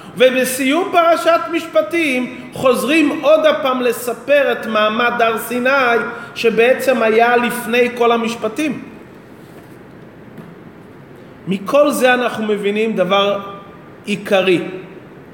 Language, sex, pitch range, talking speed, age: Hebrew, male, 210-270 Hz, 85 wpm, 40-59